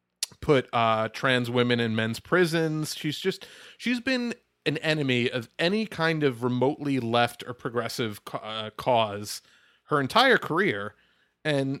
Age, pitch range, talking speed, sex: 30-49, 115-145 Hz, 135 wpm, male